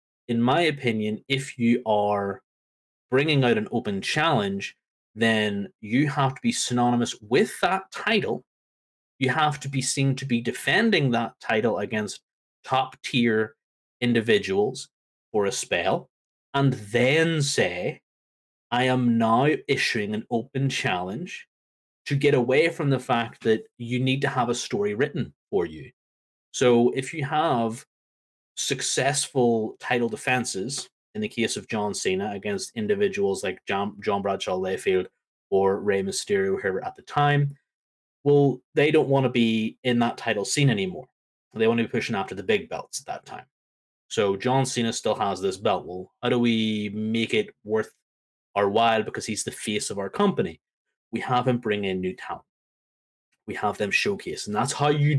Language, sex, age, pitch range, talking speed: English, male, 30-49, 110-145 Hz, 165 wpm